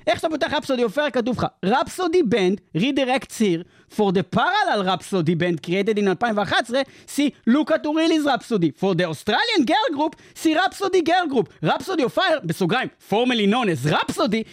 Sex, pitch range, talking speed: male, 220-330 Hz, 165 wpm